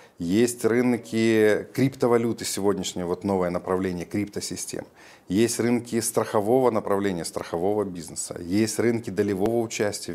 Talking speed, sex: 100 wpm, male